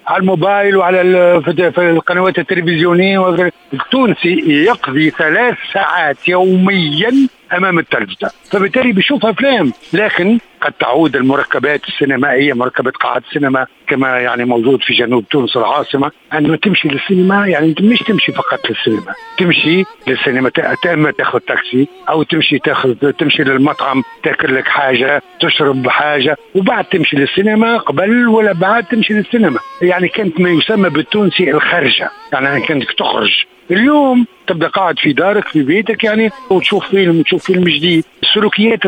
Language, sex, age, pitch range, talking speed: Arabic, male, 60-79, 150-200 Hz, 130 wpm